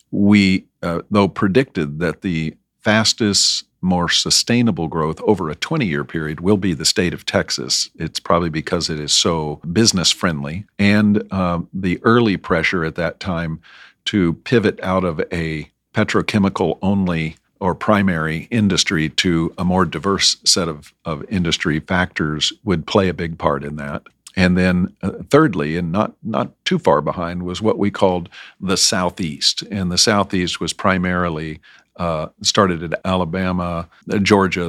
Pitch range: 85-100 Hz